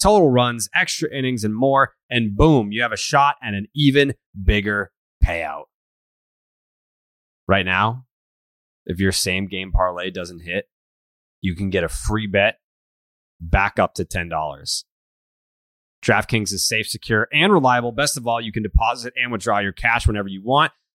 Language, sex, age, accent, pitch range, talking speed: English, male, 20-39, American, 105-155 Hz, 155 wpm